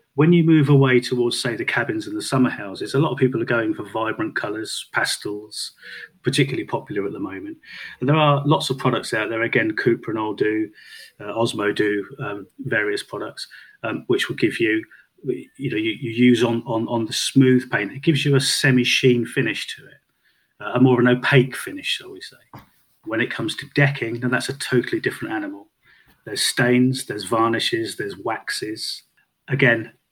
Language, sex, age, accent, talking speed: English, male, 30-49, British, 190 wpm